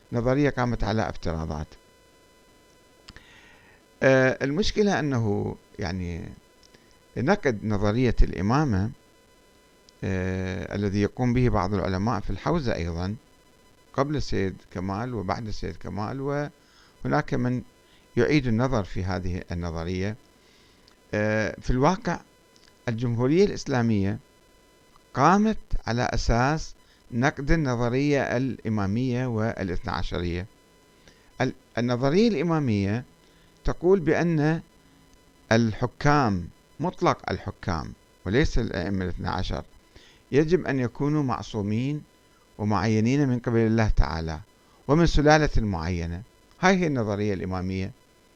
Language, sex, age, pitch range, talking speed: Arabic, male, 50-69, 100-135 Hz, 90 wpm